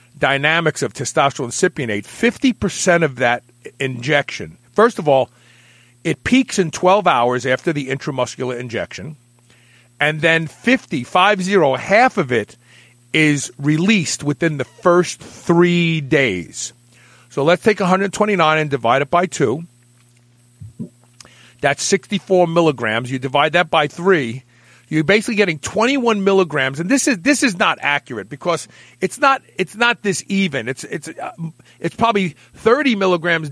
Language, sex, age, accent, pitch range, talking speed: English, male, 40-59, American, 125-185 Hz, 135 wpm